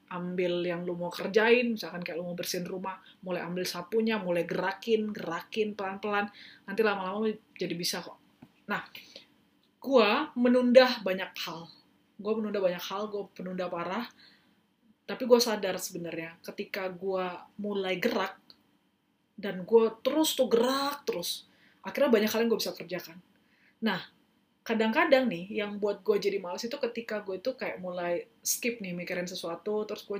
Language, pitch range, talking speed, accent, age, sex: Indonesian, 180-225 Hz, 145 wpm, native, 30-49, female